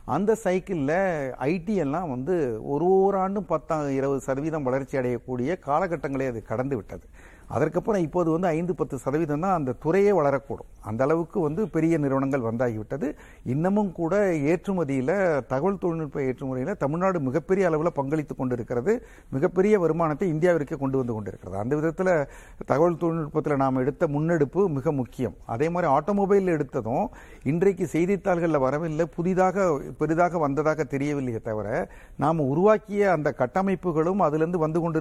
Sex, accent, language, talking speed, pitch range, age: male, native, Tamil, 135 wpm, 135-175 Hz, 50-69